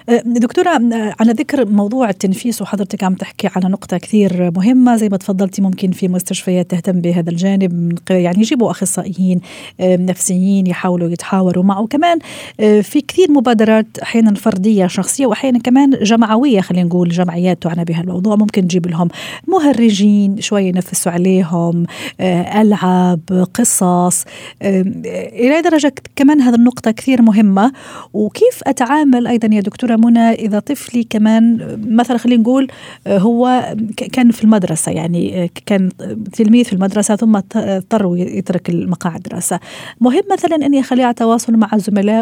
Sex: female